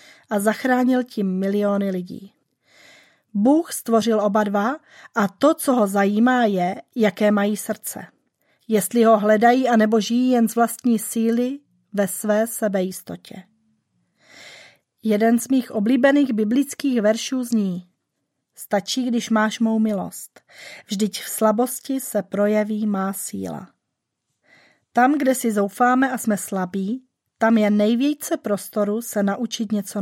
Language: Czech